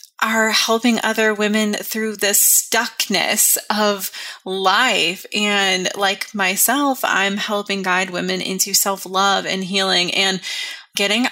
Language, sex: English, female